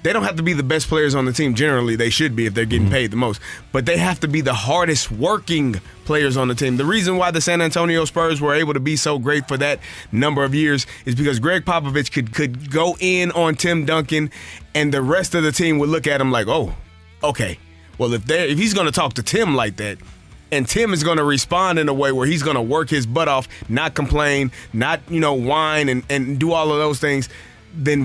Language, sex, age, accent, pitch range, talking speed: English, male, 30-49, American, 130-165 Hz, 250 wpm